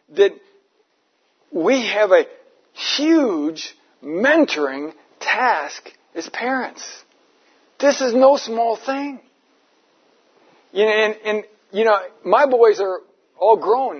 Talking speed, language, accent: 105 wpm, English, American